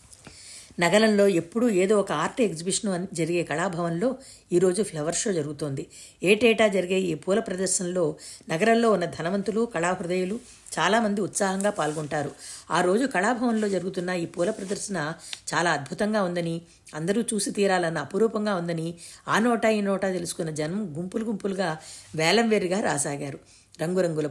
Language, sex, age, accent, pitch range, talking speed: Telugu, female, 50-69, native, 170-210 Hz, 125 wpm